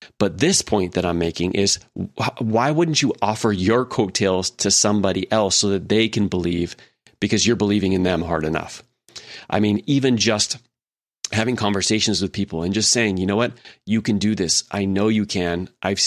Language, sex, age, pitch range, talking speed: English, male, 30-49, 100-120 Hz, 190 wpm